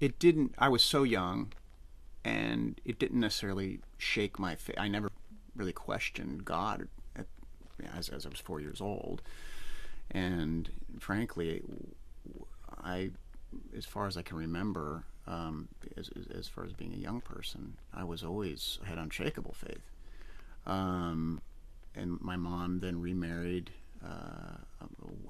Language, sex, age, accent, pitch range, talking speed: English, male, 30-49, American, 85-110 Hz, 135 wpm